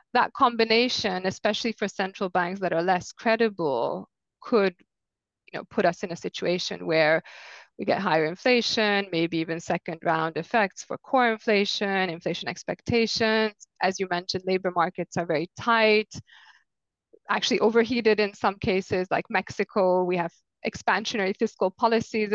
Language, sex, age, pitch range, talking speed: English, female, 20-39, 175-215 Hz, 140 wpm